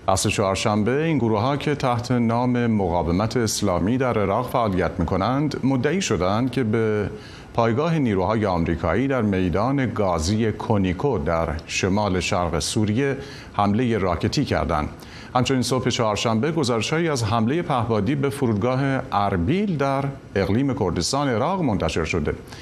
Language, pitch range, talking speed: Persian, 95-130 Hz, 125 wpm